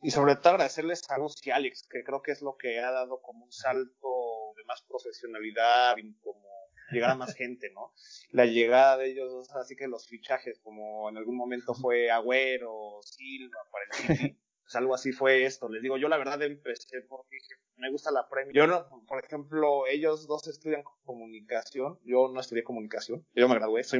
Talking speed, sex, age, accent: 185 wpm, male, 30-49, Mexican